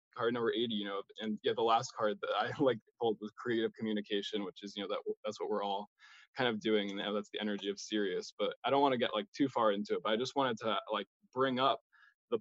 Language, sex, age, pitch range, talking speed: English, male, 20-39, 110-120 Hz, 265 wpm